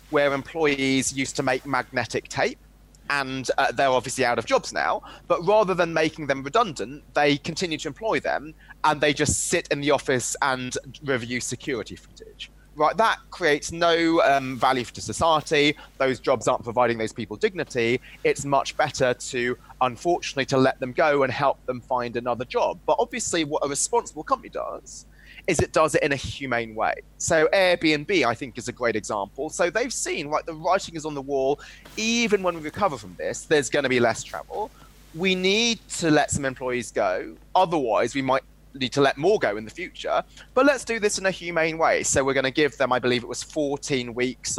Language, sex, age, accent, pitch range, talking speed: English, male, 30-49, British, 125-155 Hz, 200 wpm